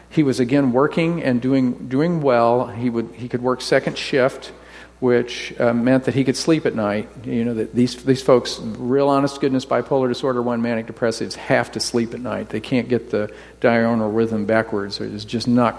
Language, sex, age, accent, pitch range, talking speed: English, male, 50-69, American, 120-140 Hz, 205 wpm